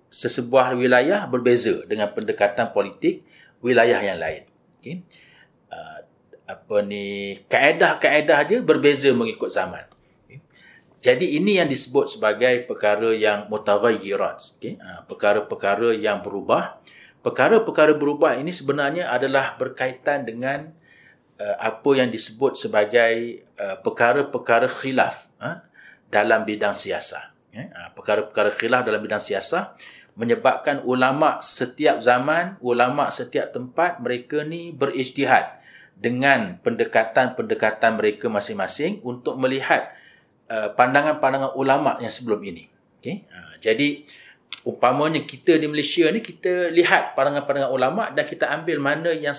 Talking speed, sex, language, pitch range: 110 wpm, male, English, 115-150 Hz